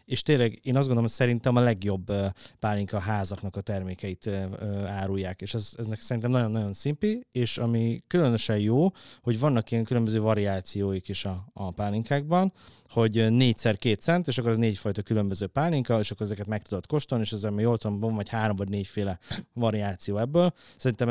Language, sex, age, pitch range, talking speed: Hungarian, male, 30-49, 100-125 Hz, 165 wpm